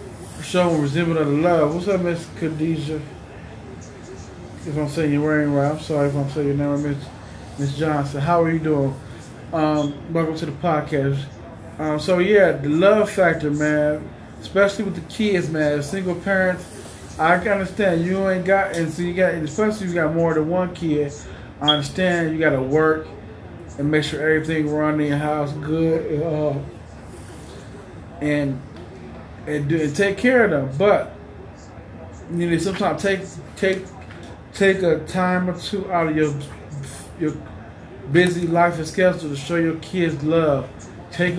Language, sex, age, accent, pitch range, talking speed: English, male, 20-39, American, 140-175 Hz, 165 wpm